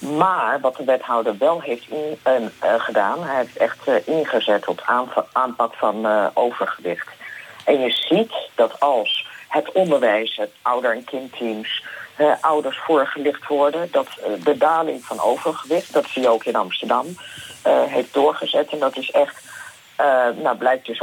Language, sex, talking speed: Dutch, female, 165 wpm